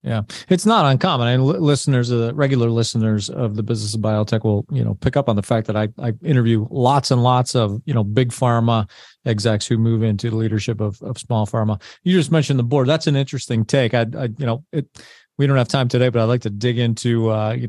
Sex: male